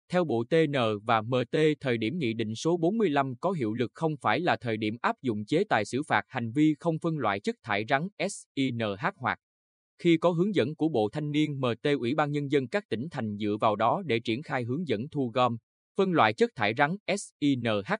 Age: 20-39